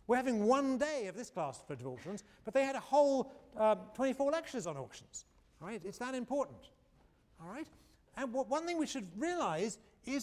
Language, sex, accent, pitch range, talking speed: English, male, British, 175-275 Hz, 195 wpm